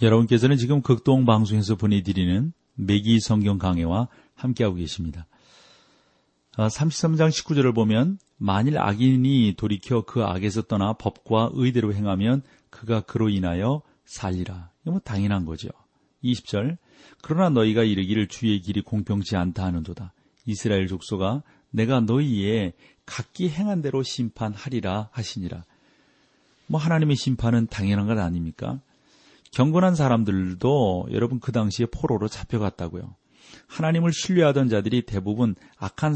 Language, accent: Korean, native